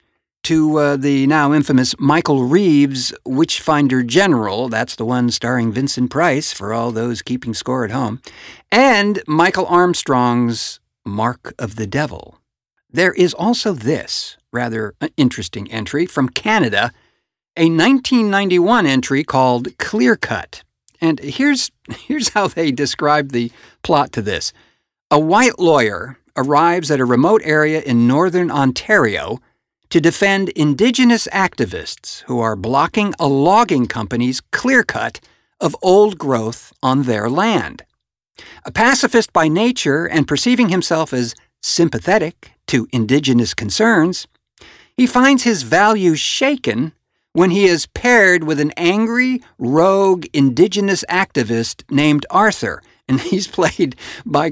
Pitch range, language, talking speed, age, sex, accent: 125-190 Hz, English, 125 wpm, 60-79, male, American